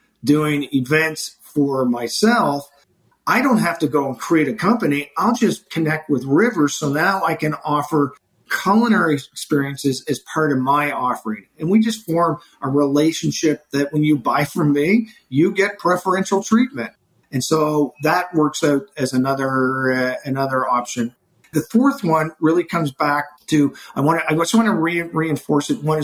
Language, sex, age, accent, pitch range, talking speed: English, male, 50-69, American, 135-165 Hz, 170 wpm